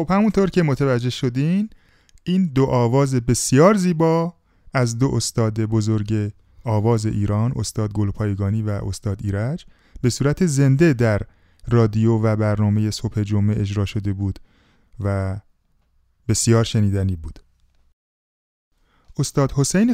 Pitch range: 110-140 Hz